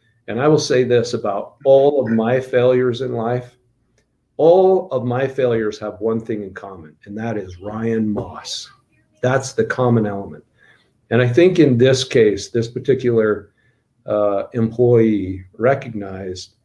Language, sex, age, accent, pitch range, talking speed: English, male, 50-69, American, 110-130 Hz, 150 wpm